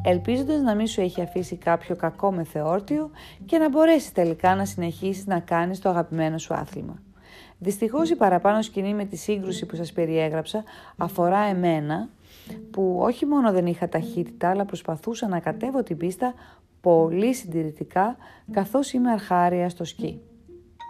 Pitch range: 165-220 Hz